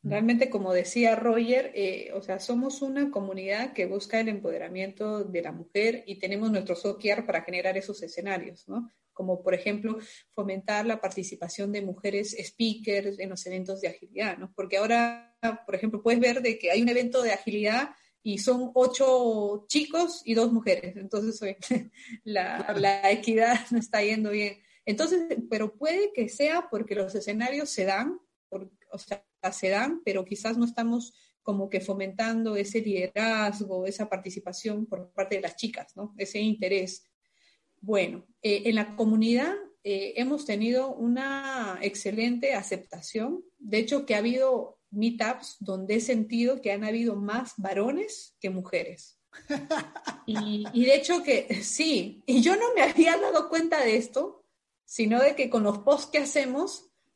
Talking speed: 160 wpm